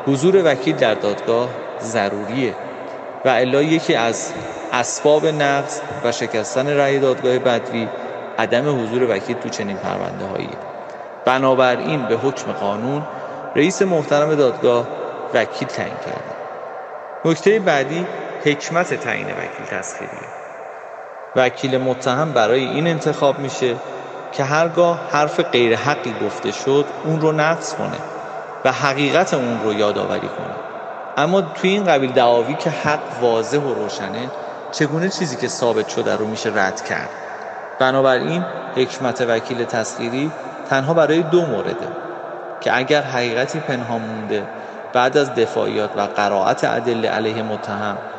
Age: 30-49